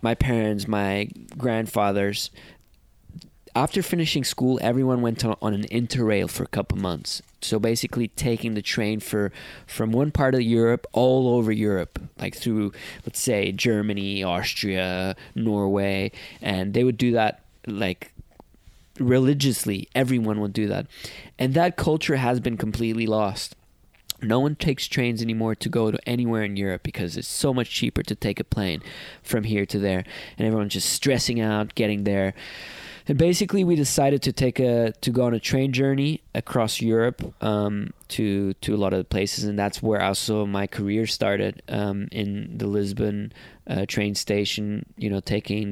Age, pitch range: 20-39, 100-120 Hz